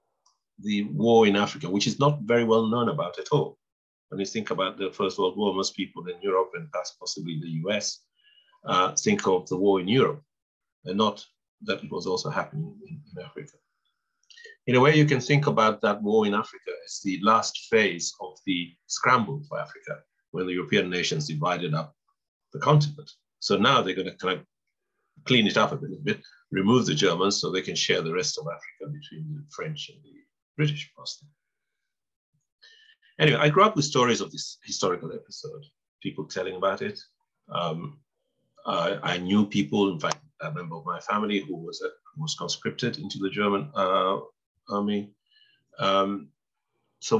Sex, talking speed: male, 180 wpm